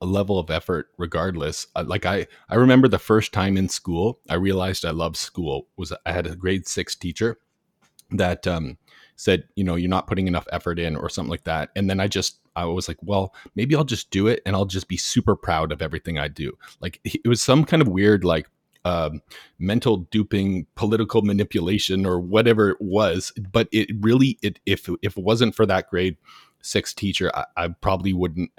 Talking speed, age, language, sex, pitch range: 210 wpm, 30-49, English, male, 85-105 Hz